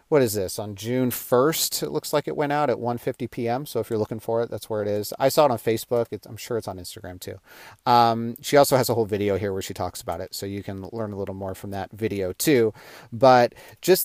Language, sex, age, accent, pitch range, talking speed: English, male, 30-49, American, 110-130 Hz, 265 wpm